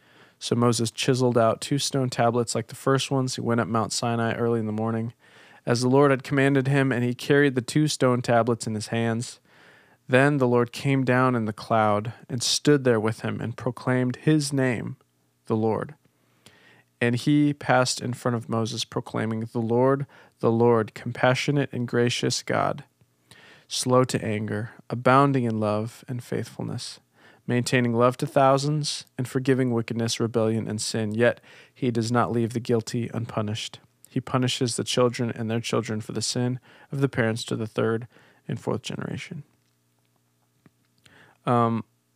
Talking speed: 165 wpm